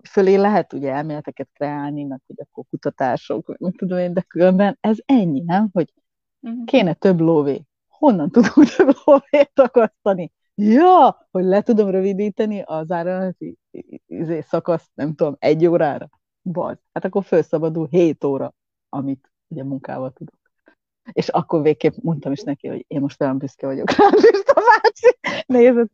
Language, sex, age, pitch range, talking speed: Hungarian, female, 30-49, 165-215 Hz, 150 wpm